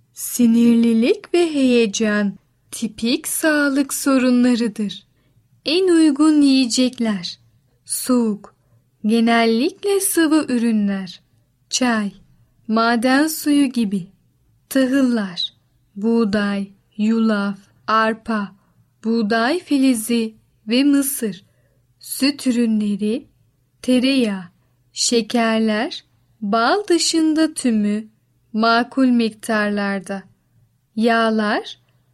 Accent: native